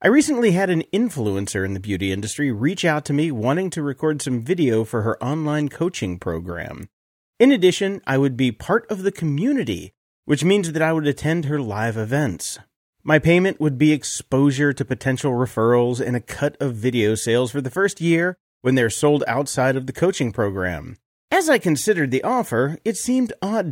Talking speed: 190 wpm